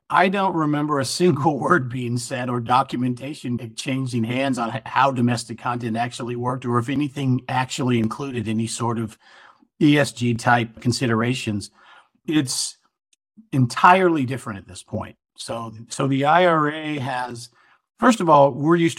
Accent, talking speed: American, 140 wpm